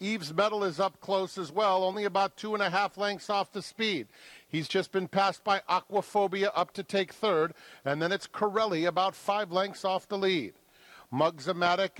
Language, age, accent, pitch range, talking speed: English, 50-69, American, 175-205 Hz, 190 wpm